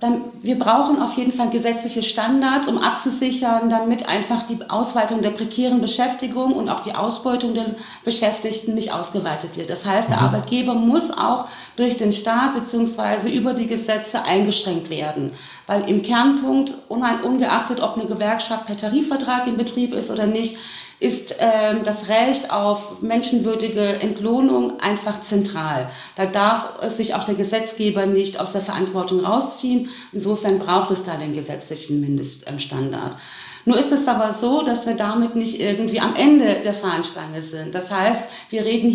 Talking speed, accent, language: 155 wpm, German, German